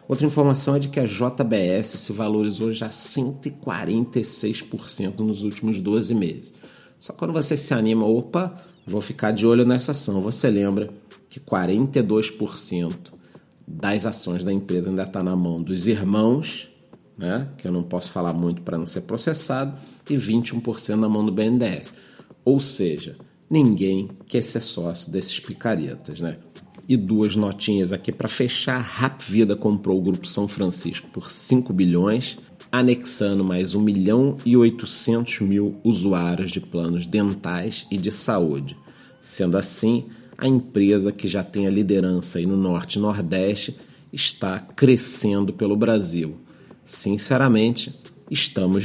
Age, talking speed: 40-59, 140 wpm